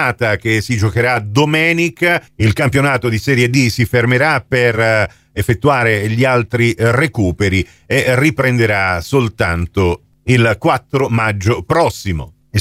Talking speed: 115 wpm